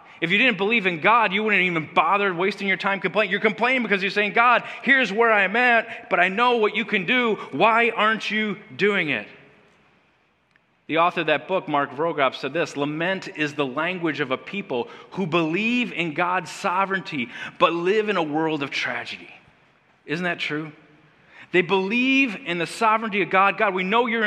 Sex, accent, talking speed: male, American, 195 wpm